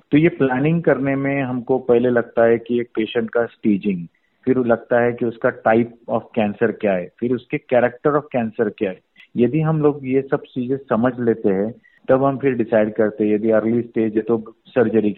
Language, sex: Hindi, male